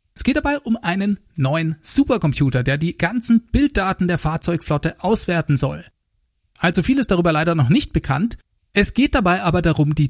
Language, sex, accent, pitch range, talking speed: German, male, German, 150-210 Hz, 170 wpm